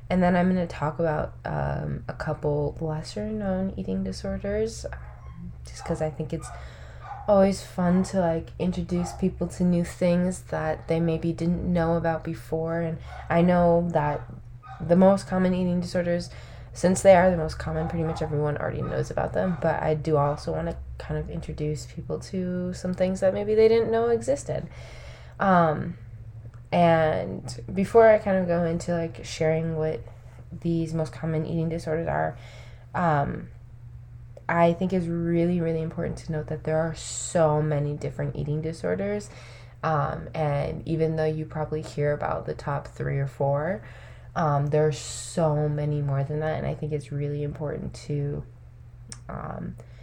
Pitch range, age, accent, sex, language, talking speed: 135-170 Hz, 20-39, American, female, English, 165 wpm